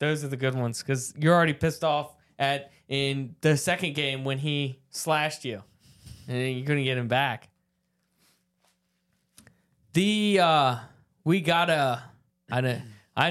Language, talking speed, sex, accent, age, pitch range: English, 140 wpm, male, American, 20-39, 130-165 Hz